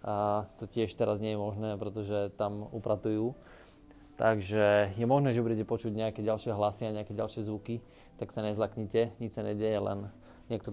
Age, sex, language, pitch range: 20-39, male, Slovak, 105-120 Hz